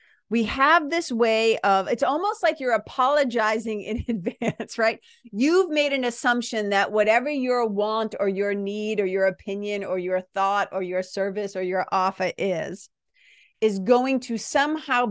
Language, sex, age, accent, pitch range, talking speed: English, female, 40-59, American, 190-255 Hz, 165 wpm